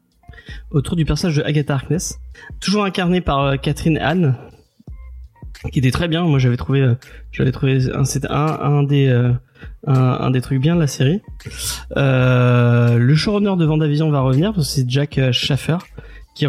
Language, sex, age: French, male, 20-39